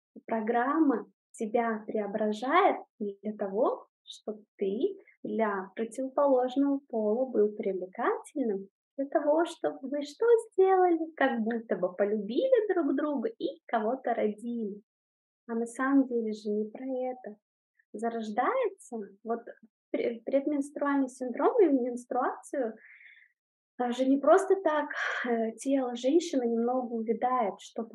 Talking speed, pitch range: 110 wpm, 215-275 Hz